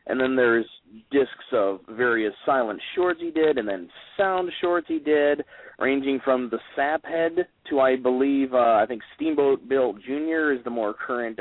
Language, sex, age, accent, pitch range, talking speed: English, male, 30-49, American, 115-145 Hz, 180 wpm